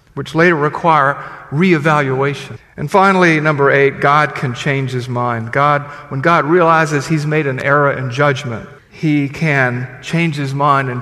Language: English